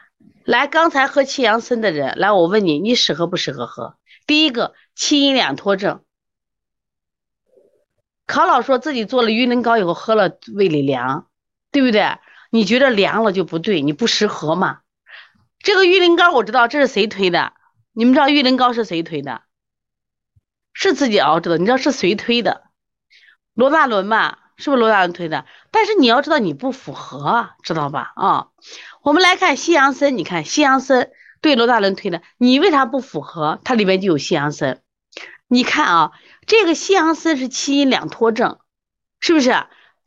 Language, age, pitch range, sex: Chinese, 30-49, 200-295 Hz, female